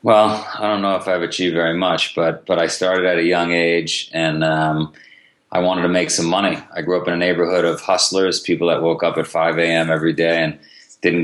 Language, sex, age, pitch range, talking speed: English, male, 30-49, 85-90 Hz, 235 wpm